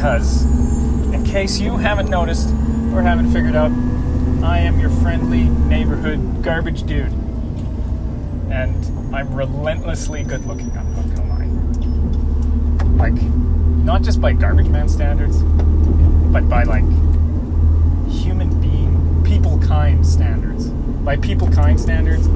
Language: English